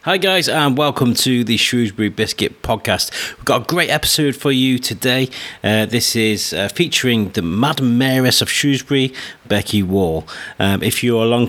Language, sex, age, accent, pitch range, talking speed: English, male, 30-49, British, 110-135 Hz, 180 wpm